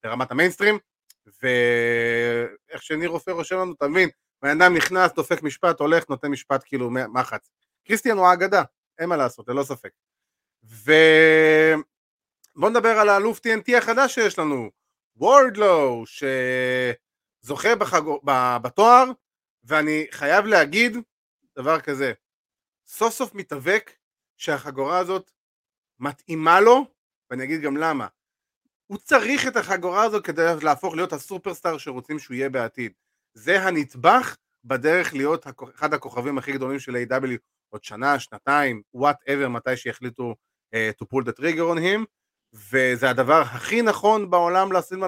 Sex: male